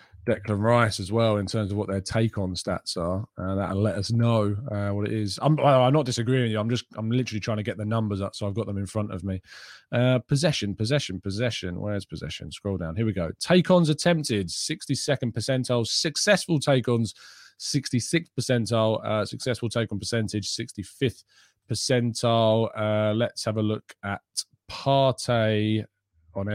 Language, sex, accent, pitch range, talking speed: English, male, British, 100-130 Hz, 175 wpm